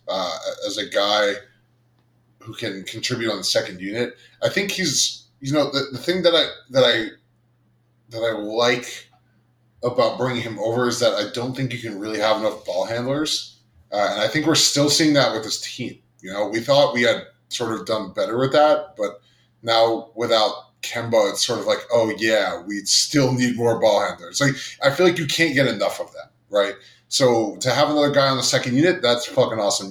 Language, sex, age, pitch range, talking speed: English, male, 20-39, 115-150 Hz, 210 wpm